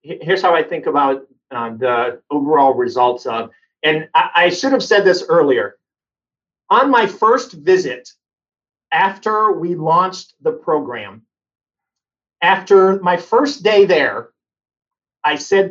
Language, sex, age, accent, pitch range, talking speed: English, male, 40-59, American, 165-215 Hz, 125 wpm